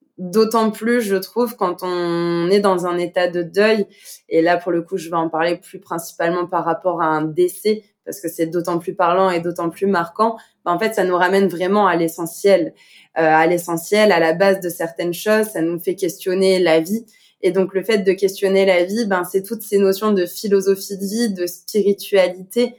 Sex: female